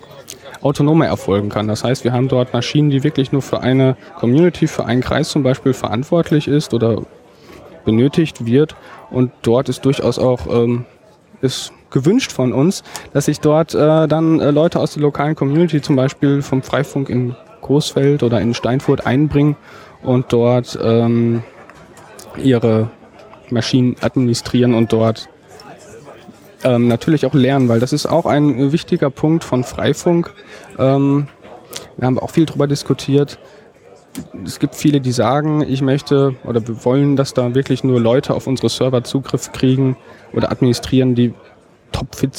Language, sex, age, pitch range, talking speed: German, male, 10-29, 120-150 Hz, 155 wpm